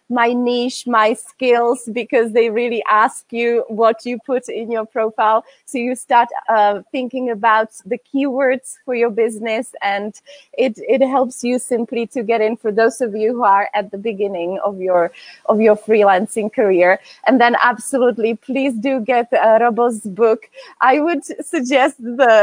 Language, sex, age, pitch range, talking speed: Czech, female, 30-49, 215-270 Hz, 170 wpm